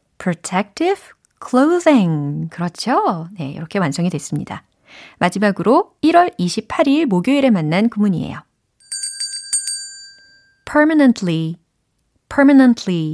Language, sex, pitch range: Korean, female, 170-265 Hz